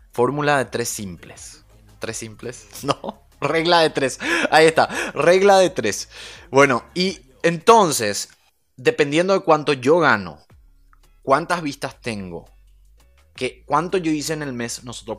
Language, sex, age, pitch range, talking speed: Spanish, male, 20-39, 105-155 Hz, 135 wpm